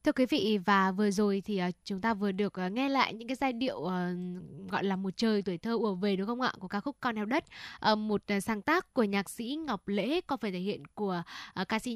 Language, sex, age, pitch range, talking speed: Vietnamese, female, 10-29, 200-260 Hz, 245 wpm